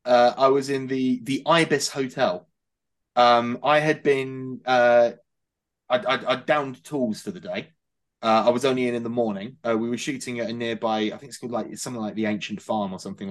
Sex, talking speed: male, 220 wpm